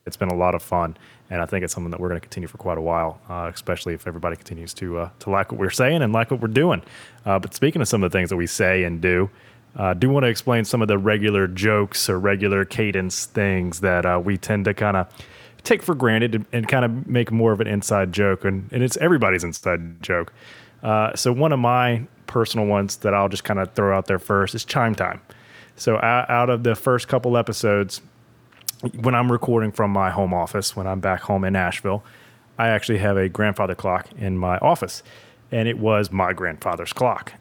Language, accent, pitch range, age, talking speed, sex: English, American, 95-115 Hz, 30-49, 230 wpm, male